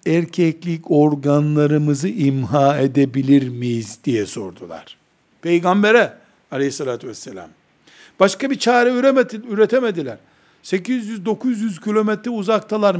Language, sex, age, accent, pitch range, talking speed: Turkish, male, 60-79, native, 180-215 Hz, 80 wpm